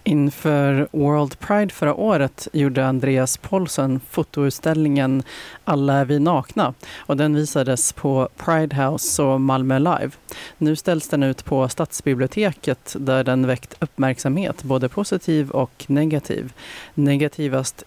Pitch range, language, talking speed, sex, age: 130-150 Hz, Swedish, 125 wpm, female, 30-49